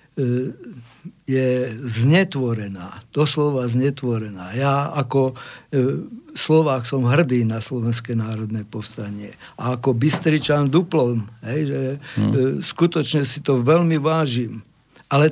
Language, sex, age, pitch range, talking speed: Slovak, male, 50-69, 130-160 Hz, 110 wpm